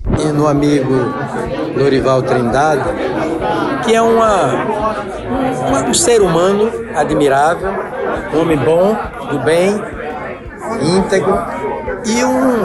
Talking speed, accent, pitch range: 85 wpm, Brazilian, 140-185 Hz